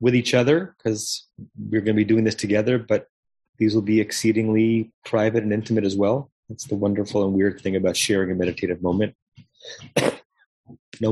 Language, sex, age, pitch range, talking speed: English, male, 30-49, 100-115 Hz, 180 wpm